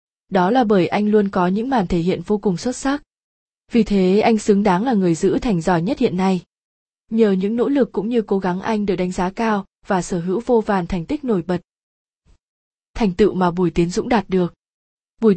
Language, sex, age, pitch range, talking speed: Vietnamese, female, 20-39, 185-230 Hz, 225 wpm